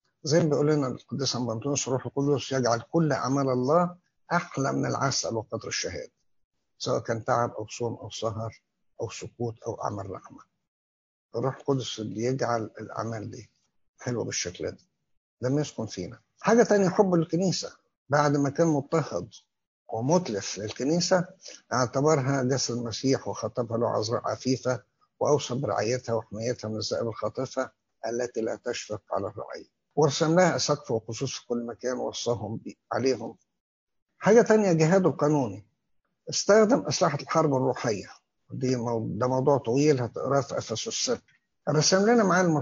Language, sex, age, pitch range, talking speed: English, male, 60-79, 120-155 Hz, 130 wpm